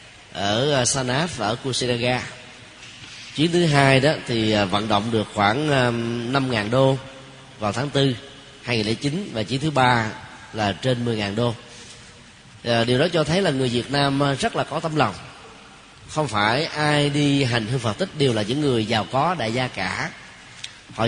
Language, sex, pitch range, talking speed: Vietnamese, male, 115-150 Hz, 185 wpm